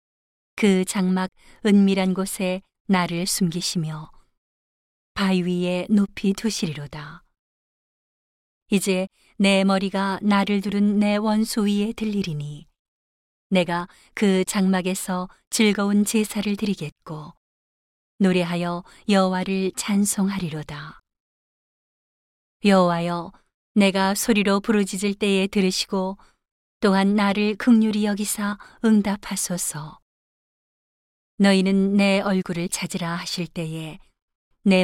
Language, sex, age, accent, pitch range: Korean, female, 40-59, native, 175-205 Hz